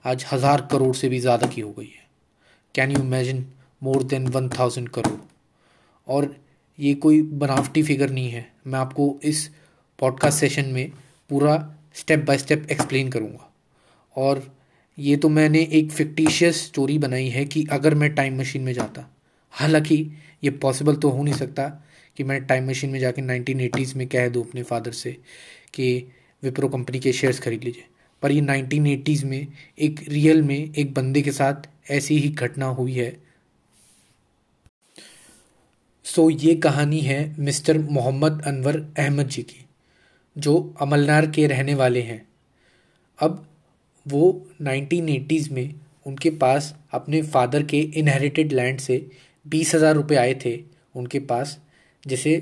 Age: 20-39